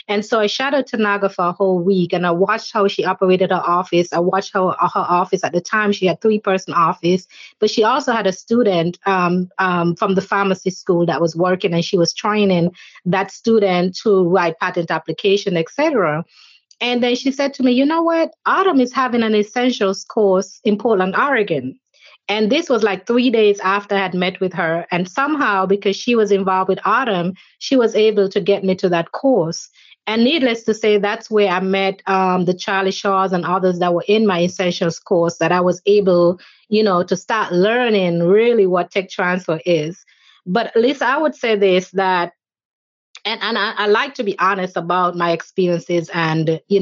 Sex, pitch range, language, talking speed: female, 180-215 Hz, English, 205 wpm